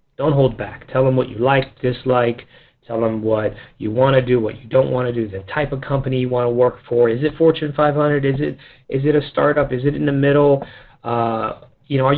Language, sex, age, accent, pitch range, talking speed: English, male, 30-49, American, 120-145 Hz, 245 wpm